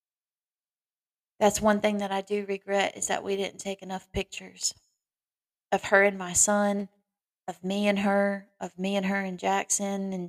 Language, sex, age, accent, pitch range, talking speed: English, female, 20-39, American, 185-205 Hz, 175 wpm